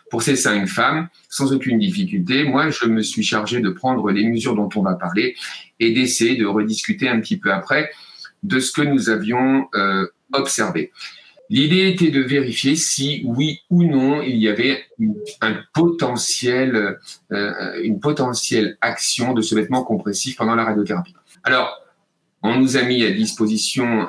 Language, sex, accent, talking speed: French, male, French, 165 wpm